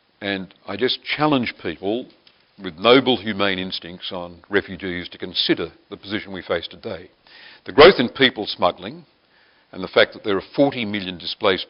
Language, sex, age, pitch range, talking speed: English, male, 50-69, 90-115 Hz, 165 wpm